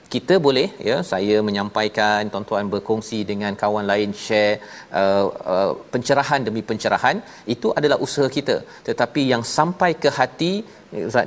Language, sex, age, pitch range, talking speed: Malayalam, male, 40-59, 110-145 Hz, 140 wpm